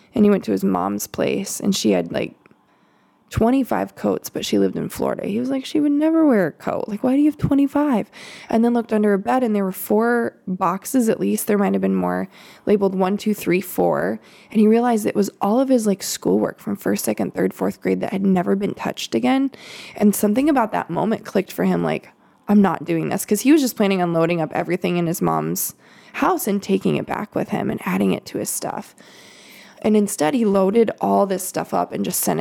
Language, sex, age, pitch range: English, female, 20-39, 180-240 Hz